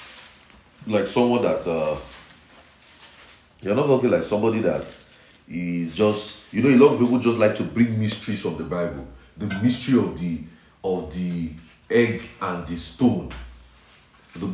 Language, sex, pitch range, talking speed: English, male, 90-125 Hz, 155 wpm